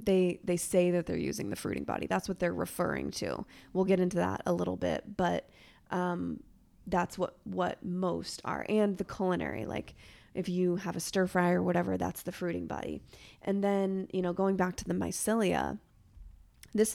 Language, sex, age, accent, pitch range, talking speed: English, female, 20-39, American, 180-195 Hz, 190 wpm